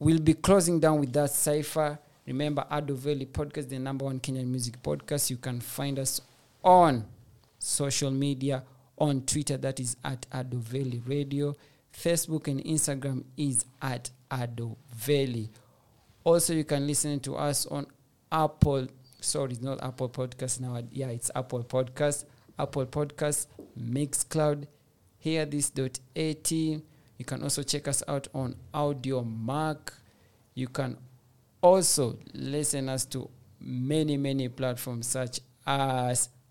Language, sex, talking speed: English, male, 135 wpm